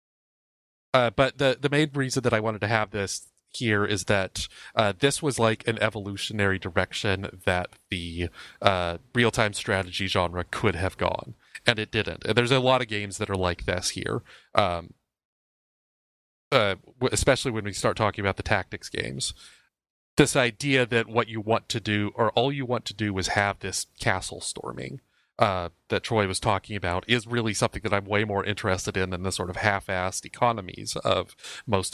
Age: 30-49